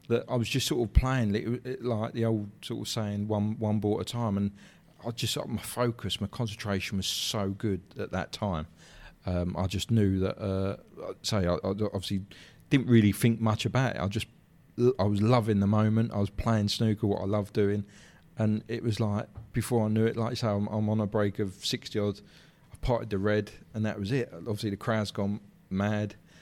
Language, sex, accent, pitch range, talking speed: English, male, British, 100-115 Hz, 220 wpm